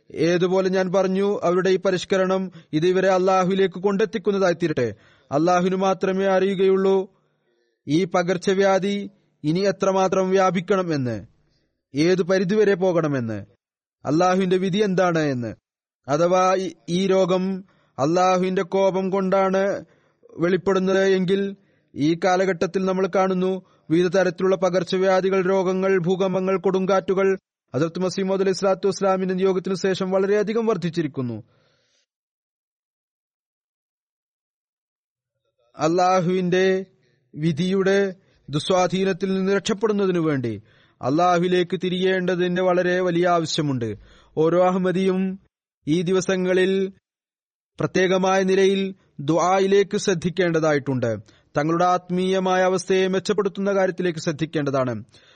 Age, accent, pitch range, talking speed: 30-49, native, 170-195 Hz, 80 wpm